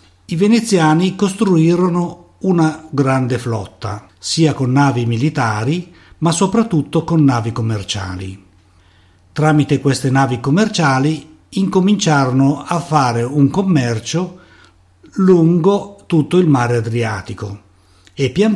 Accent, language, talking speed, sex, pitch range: native, Italian, 100 wpm, male, 110-160 Hz